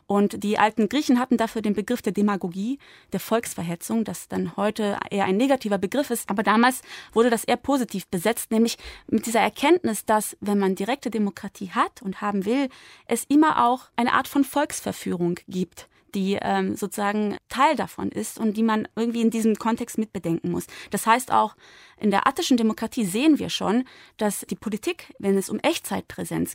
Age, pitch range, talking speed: 20-39, 200-245 Hz, 180 wpm